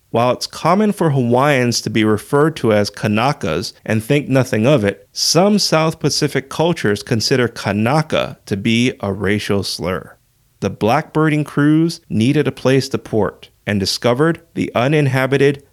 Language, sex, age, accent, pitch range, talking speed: English, male, 30-49, American, 105-140 Hz, 150 wpm